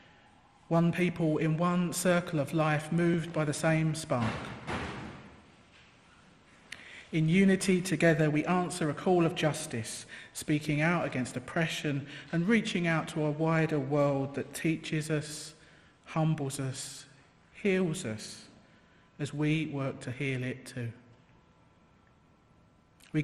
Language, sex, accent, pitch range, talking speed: English, male, British, 135-160 Hz, 120 wpm